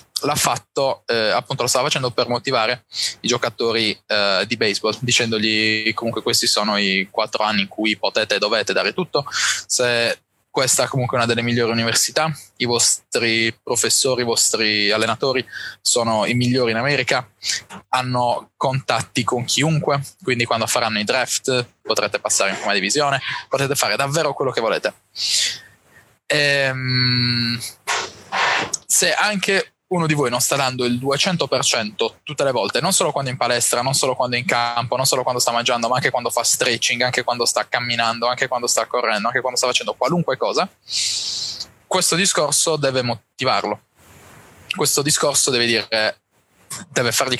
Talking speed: 160 wpm